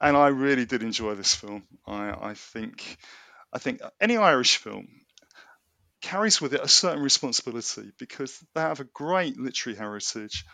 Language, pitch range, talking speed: English, 115-170 Hz, 160 wpm